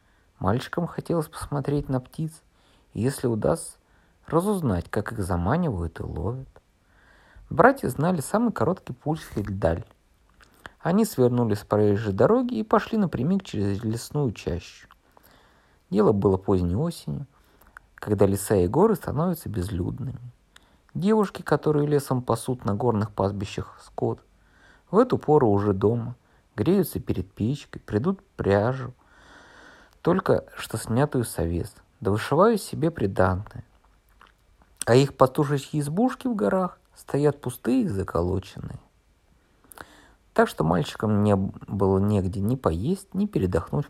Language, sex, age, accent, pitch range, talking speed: Russian, male, 50-69, native, 100-155 Hz, 120 wpm